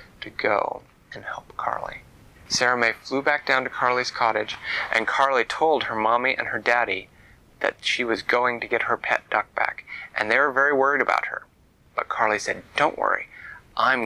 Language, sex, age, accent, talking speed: English, male, 30-49, American, 190 wpm